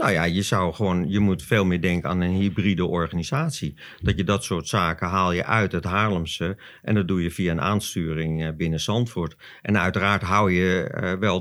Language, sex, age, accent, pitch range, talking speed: Dutch, male, 50-69, Dutch, 85-105 Hz, 200 wpm